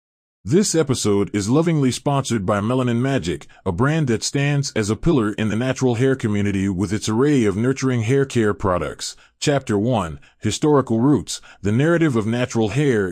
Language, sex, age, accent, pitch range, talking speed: English, male, 30-49, American, 105-140 Hz, 170 wpm